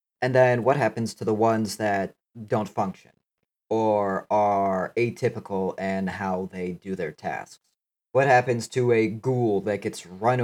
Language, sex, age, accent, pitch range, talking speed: English, male, 30-49, American, 100-120 Hz, 155 wpm